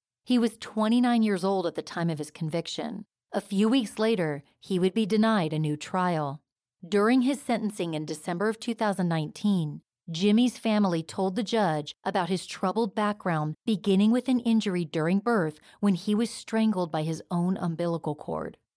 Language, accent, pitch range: English, American, 165-220 Hz